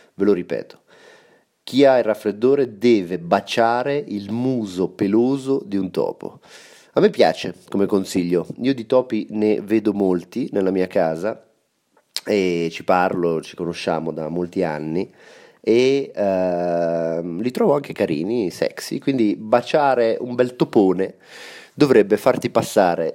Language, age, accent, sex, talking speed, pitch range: Italian, 30-49, native, male, 135 wpm, 95-130 Hz